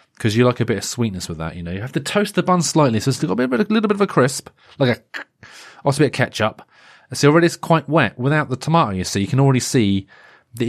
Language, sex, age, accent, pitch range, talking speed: English, male, 30-49, British, 100-130 Hz, 300 wpm